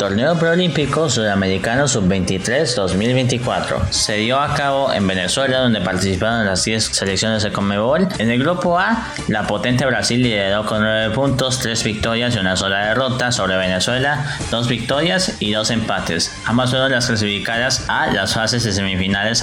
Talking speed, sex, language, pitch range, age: 155 wpm, male, English, 105-135 Hz, 20-39